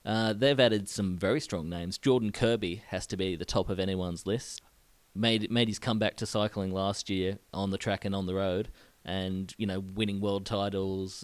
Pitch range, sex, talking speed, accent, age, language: 95-110 Hz, male, 205 wpm, Australian, 20-39, English